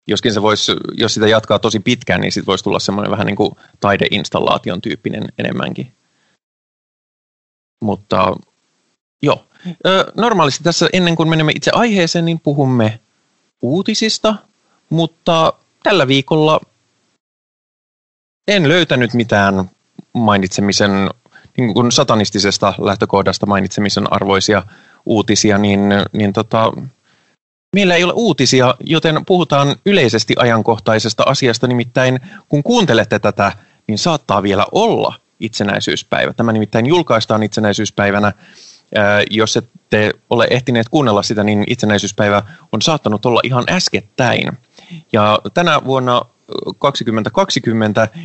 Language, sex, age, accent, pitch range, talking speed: Finnish, male, 20-39, native, 105-160 Hz, 105 wpm